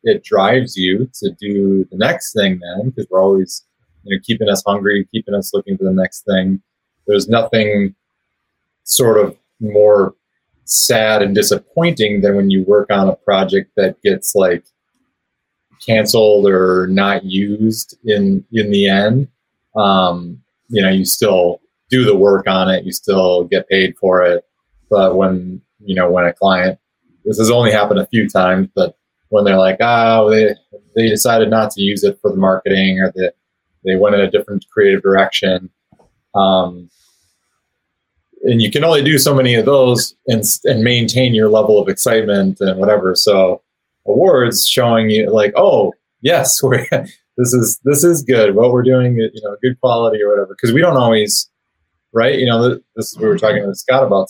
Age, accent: 30-49, American